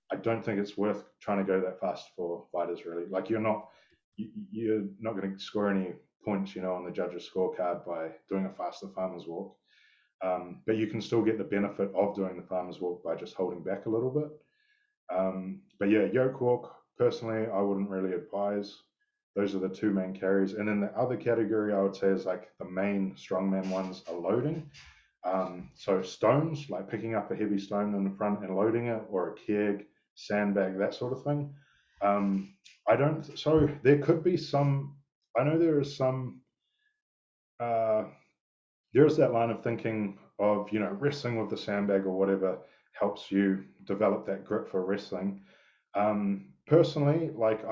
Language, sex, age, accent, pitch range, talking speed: English, male, 20-39, Australian, 95-130 Hz, 185 wpm